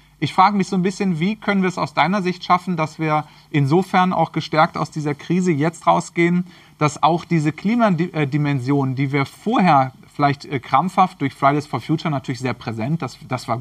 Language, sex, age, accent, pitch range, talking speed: German, male, 40-59, German, 140-175 Hz, 190 wpm